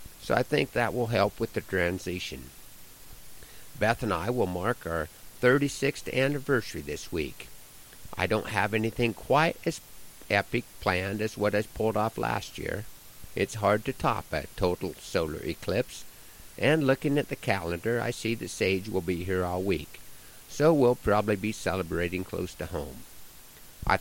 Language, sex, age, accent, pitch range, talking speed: English, male, 50-69, American, 95-125 Hz, 160 wpm